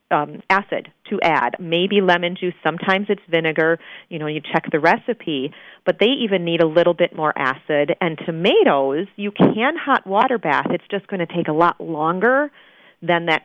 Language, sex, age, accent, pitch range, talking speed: English, female, 40-59, American, 155-195 Hz, 190 wpm